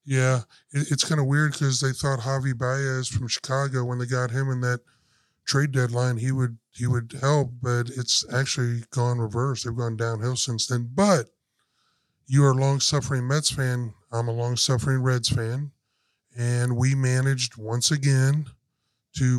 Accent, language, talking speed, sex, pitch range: American, English, 170 wpm, male, 120-135 Hz